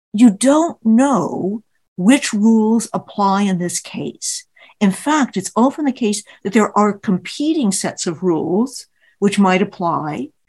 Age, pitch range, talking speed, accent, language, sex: 60-79, 180-225 Hz, 145 wpm, American, English, female